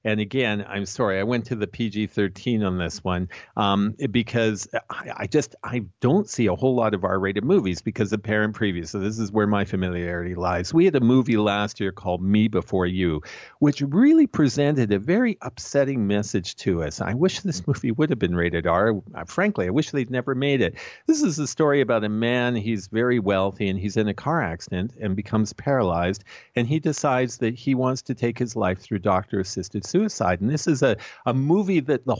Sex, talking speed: male, 210 wpm